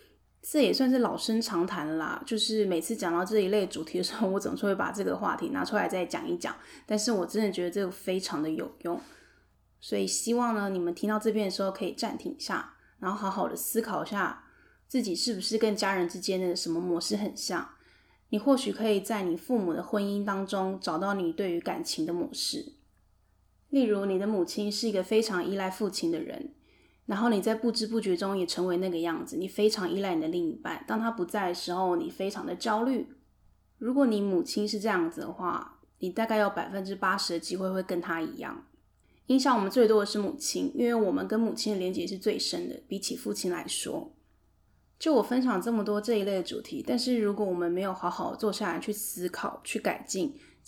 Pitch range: 185-230 Hz